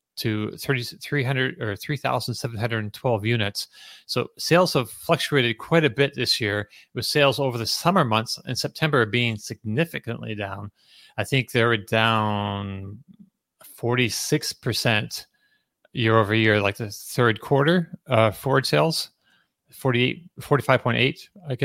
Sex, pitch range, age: male, 110-140 Hz, 30-49